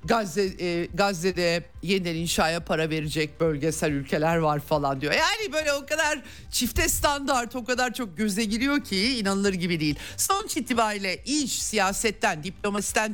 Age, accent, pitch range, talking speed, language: 50-69, native, 155-225 Hz, 145 wpm, Turkish